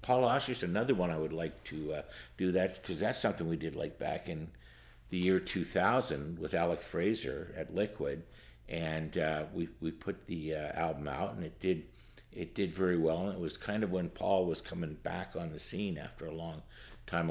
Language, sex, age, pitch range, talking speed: English, male, 60-79, 80-95 Hz, 210 wpm